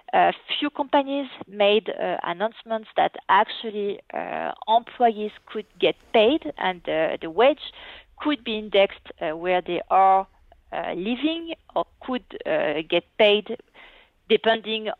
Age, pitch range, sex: 40-59, 175-220 Hz, female